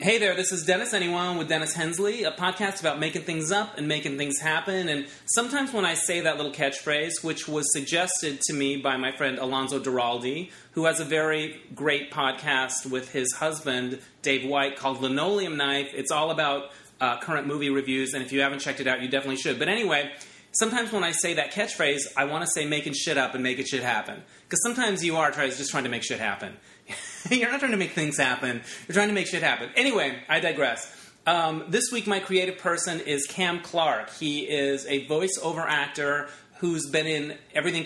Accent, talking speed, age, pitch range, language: American, 210 wpm, 30-49, 140-175 Hz, English